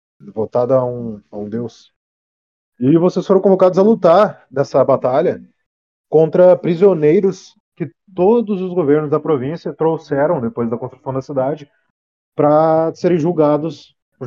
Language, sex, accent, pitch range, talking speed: Portuguese, male, Brazilian, 130-160 Hz, 135 wpm